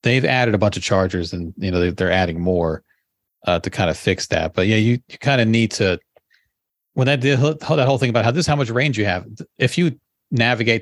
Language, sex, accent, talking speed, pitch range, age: English, male, American, 240 wpm, 90-120 Hz, 40-59